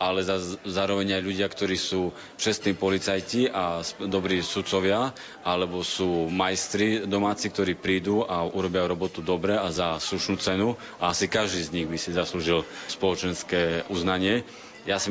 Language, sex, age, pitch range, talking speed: Slovak, male, 30-49, 90-105 Hz, 150 wpm